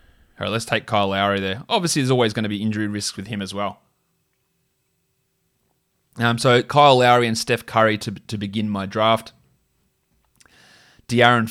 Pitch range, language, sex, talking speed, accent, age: 105-125 Hz, English, male, 165 wpm, Australian, 20-39